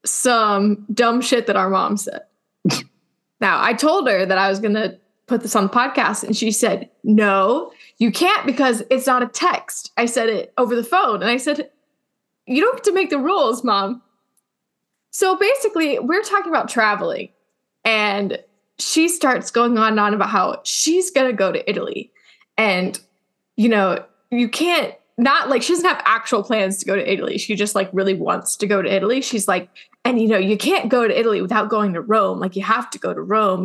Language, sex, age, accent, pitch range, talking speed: English, female, 10-29, American, 215-295 Hz, 205 wpm